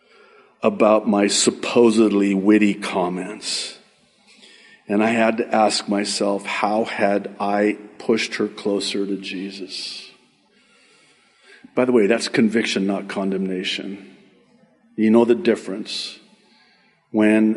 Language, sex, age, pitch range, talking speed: English, male, 50-69, 95-120 Hz, 105 wpm